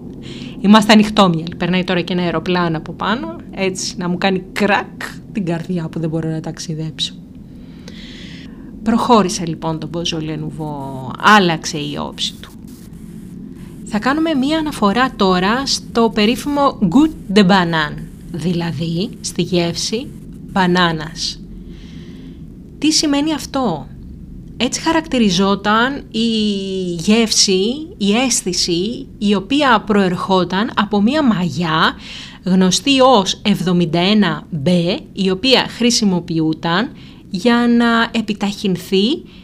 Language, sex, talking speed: Greek, female, 105 wpm